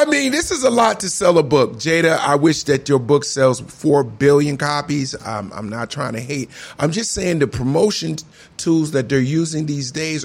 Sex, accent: male, American